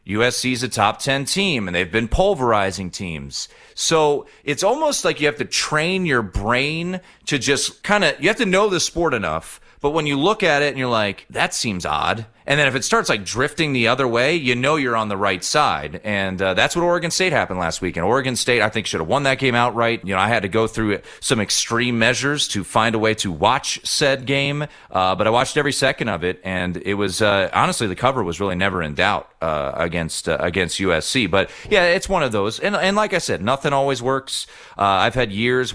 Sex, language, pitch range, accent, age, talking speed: male, English, 100-150 Hz, American, 30-49, 240 wpm